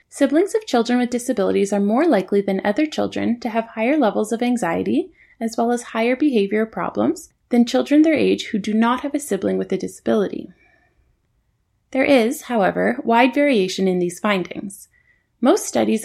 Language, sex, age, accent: English, female, 20-39, American